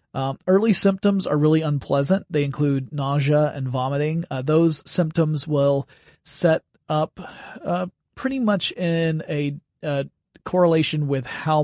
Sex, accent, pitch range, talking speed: male, American, 140-165 Hz, 135 wpm